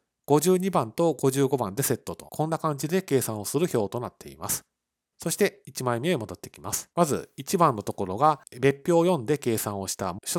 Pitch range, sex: 110-160 Hz, male